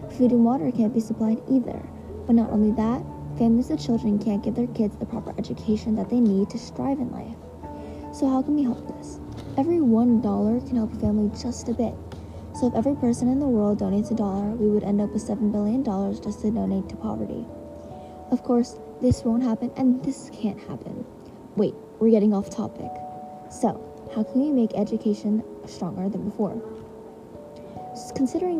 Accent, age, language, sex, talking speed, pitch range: American, 10-29, English, female, 190 wpm, 205-245 Hz